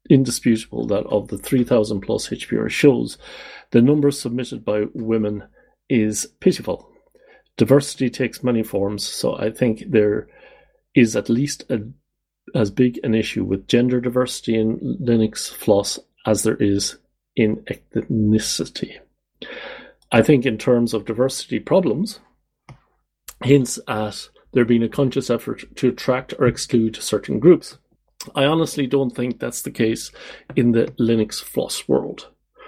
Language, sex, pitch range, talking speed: English, male, 110-130 Hz, 135 wpm